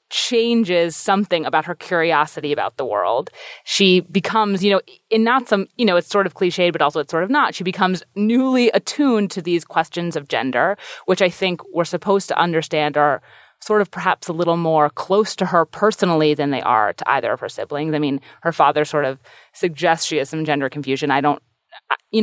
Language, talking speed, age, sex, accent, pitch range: English, 210 wpm, 30-49, female, American, 155-200 Hz